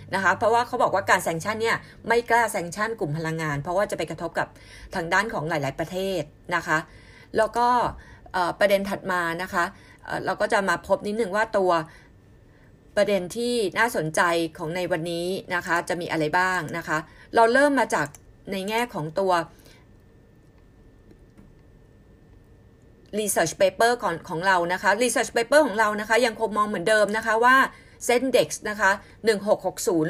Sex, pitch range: female, 170-225 Hz